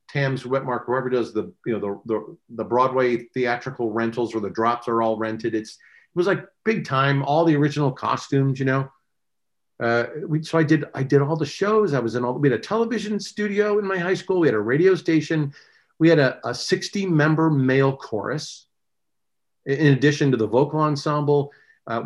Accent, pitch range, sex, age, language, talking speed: American, 120-155 Hz, male, 50-69, English, 195 wpm